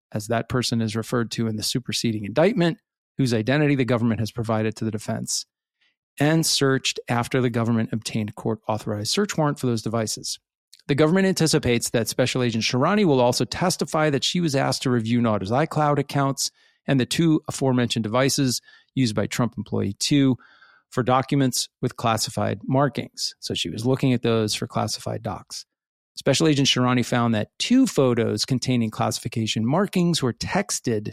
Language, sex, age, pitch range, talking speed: English, male, 40-59, 115-145 Hz, 170 wpm